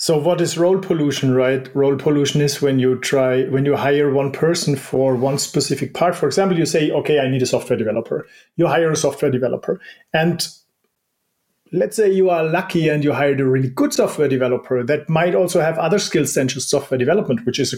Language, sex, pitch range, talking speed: English, male, 140-180 Hz, 215 wpm